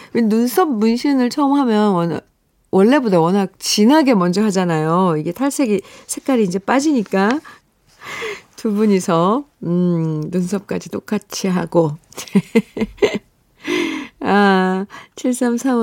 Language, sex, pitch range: Korean, female, 180-260 Hz